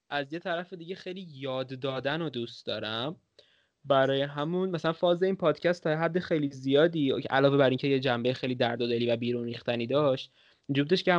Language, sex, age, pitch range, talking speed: Persian, male, 20-39, 125-150 Hz, 190 wpm